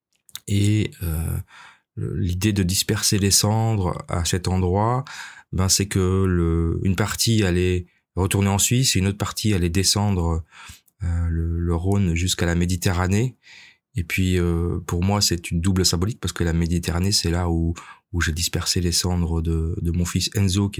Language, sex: French, male